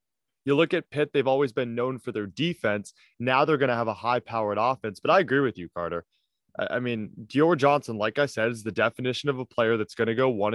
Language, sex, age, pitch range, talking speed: English, male, 20-39, 115-140 Hz, 255 wpm